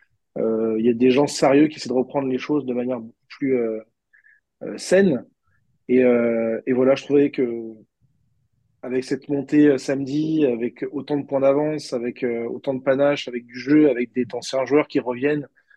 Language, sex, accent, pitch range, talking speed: French, male, French, 120-140 Hz, 195 wpm